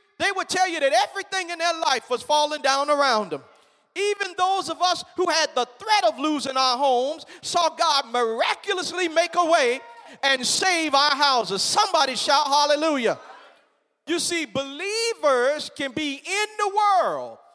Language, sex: English, male